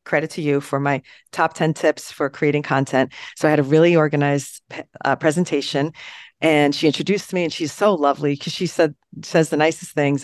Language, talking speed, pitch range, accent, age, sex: English, 200 wpm, 140-165 Hz, American, 40-59, female